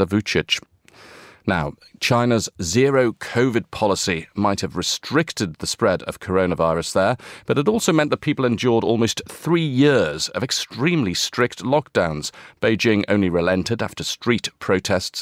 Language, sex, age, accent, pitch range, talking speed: English, male, 40-59, British, 85-115 Hz, 135 wpm